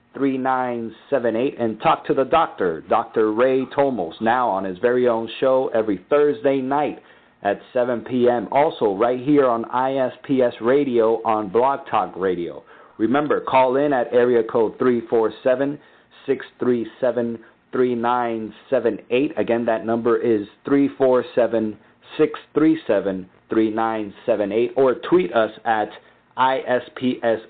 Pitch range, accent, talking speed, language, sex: 110-130 Hz, American, 120 wpm, English, male